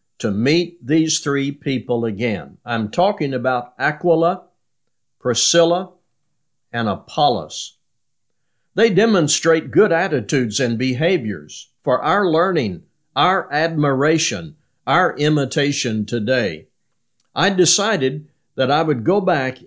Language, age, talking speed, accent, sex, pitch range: English, 50-69, 105 wpm, American, male, 120-165 Hz